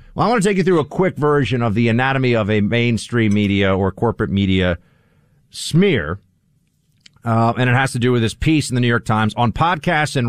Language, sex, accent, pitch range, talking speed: English, male, American, 110-155 Hz, 220 wpm